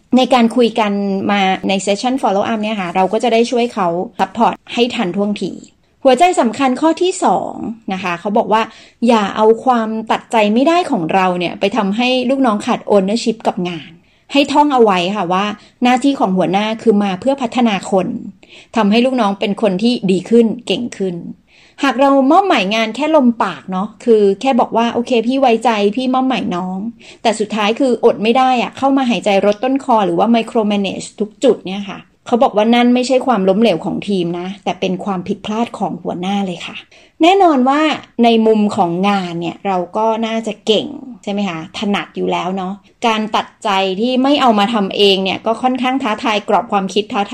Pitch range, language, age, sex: 195-250 Hz, Thai, 30-49, female